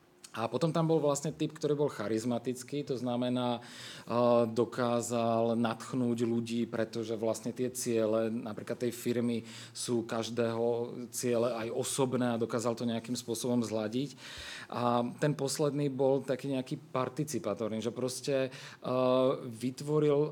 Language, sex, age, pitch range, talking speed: Czech, male, 40-59, 115-135 Hz, 130 wpm